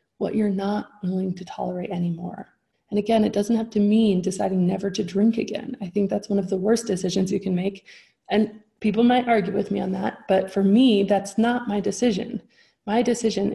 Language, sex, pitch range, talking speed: English, female, 190-225 Hz, 210 wpm